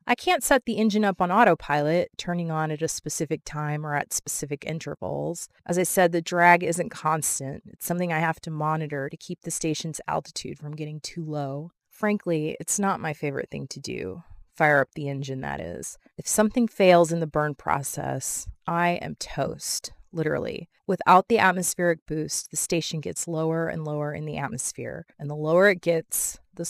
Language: English